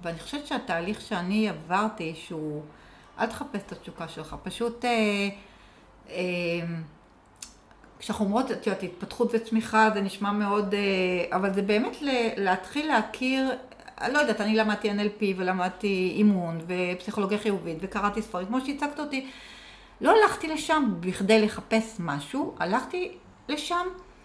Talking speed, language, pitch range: 130 wpm, Hebrew, 180-235 Hz